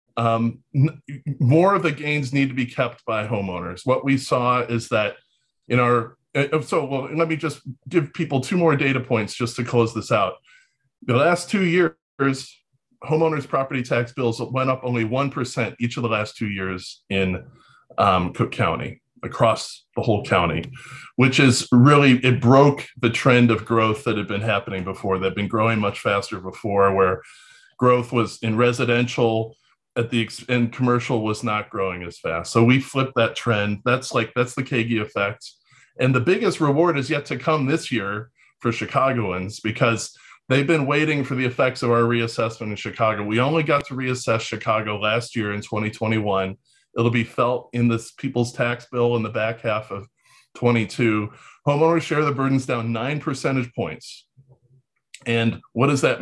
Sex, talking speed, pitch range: male, 175 wpm, 115-135 Hz